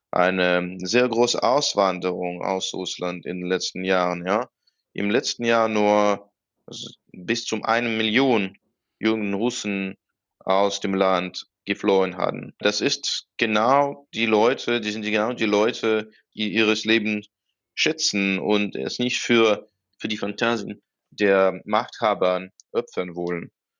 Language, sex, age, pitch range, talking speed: German, male, 20-39, 95-115 Hz, 130 wpm